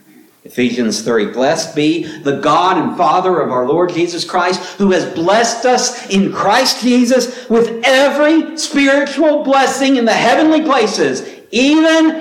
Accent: American